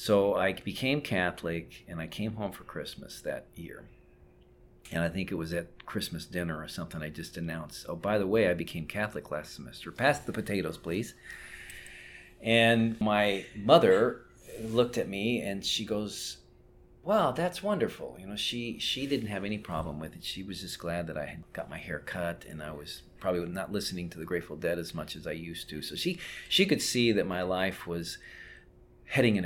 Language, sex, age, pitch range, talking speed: English, male, 40-59, 85-115 Hz, 200 wpm